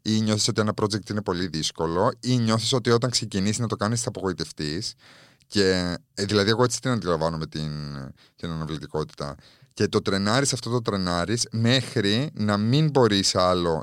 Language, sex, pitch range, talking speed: Greek, male, 85-115 Hz, 165 wpm